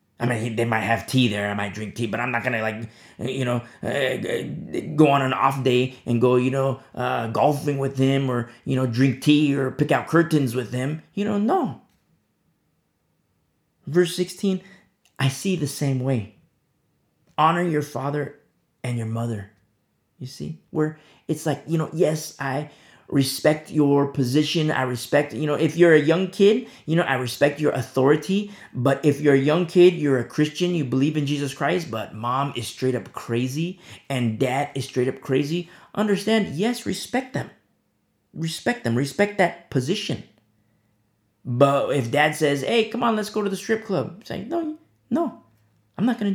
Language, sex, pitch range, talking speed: English, male, 125-175 Hz, 185 wpm